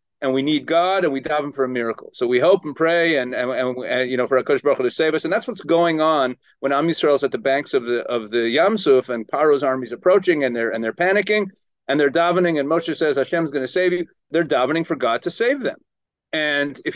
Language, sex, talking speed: English, male, 265 wpm